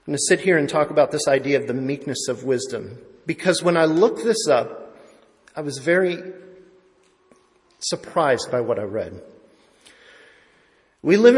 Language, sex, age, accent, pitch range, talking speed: English, male, 40-59, American, 145-185 Hz, 165 wpm